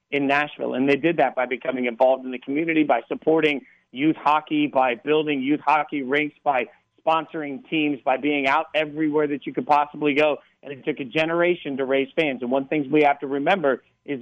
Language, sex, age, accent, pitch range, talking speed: English, male, 40-59, American, 140-160 Hz, 205 wpm